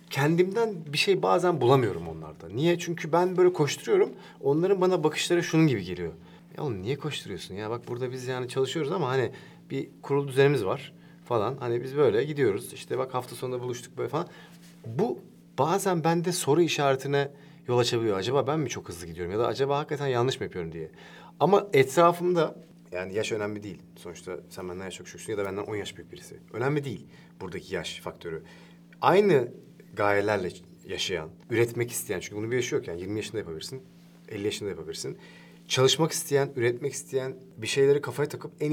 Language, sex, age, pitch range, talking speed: English, male, 40-59, 115-170 Hz, 175 wpm